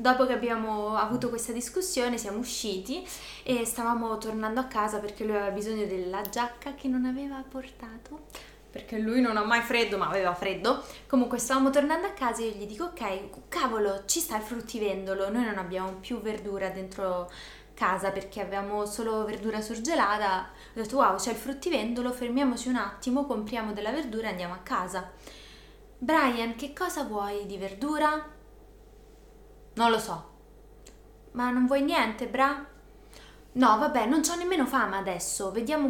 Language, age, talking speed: Italian, 20-39, 160 wpm